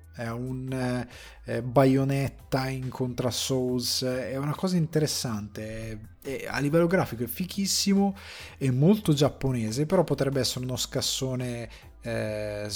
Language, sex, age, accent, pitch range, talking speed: Italian, male, 20-39, native, 110-135 Hz, 125 wpm